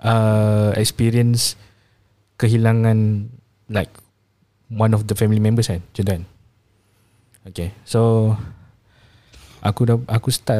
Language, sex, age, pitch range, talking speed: Malay, male, 20-39, 100-115 Hz, 95 wpm